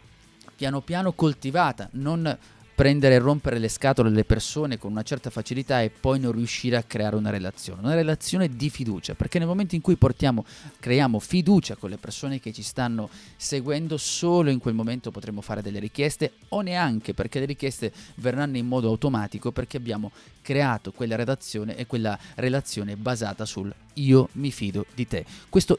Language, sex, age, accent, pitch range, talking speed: Italian, male, 30-49, native, 110-145 Hz, 175 wpm